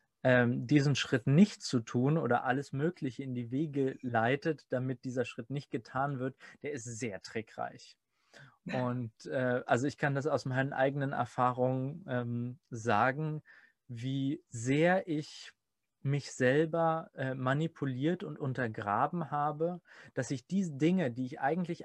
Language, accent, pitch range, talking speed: German, German, 125-150 Hz, 135 wpm